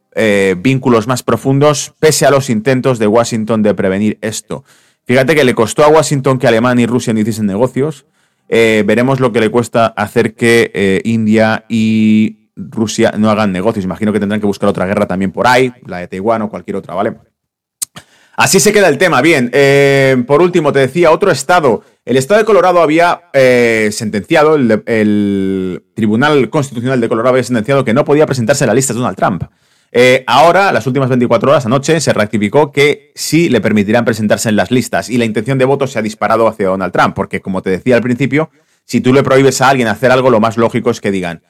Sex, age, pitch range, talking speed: male, 30-49, 110-135 Hz, 210 wpm